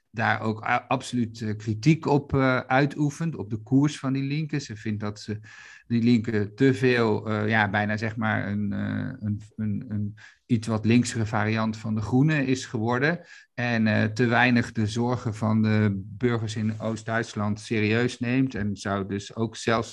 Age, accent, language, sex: 50-69, Dutch, Dutch, male